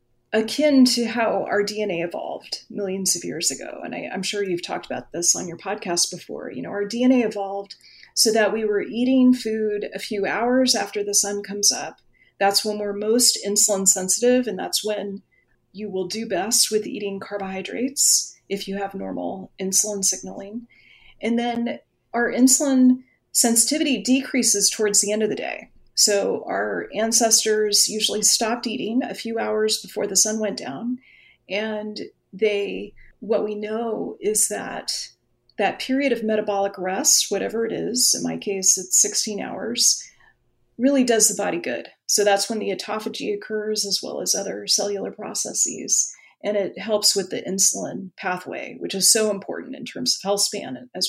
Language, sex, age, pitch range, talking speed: English, female, 30-49, 200-230 Hz, 170 wpm